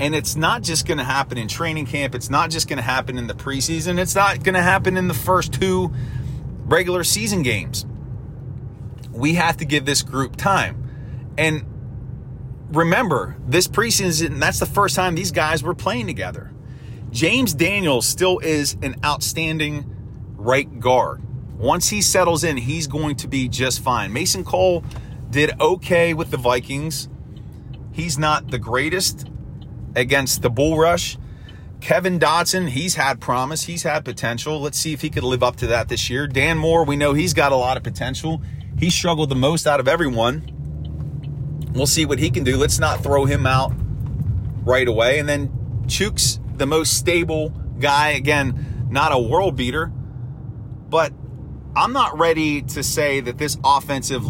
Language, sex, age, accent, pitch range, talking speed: English, male, 30-49, American, 125-155 Hz, 170 wpm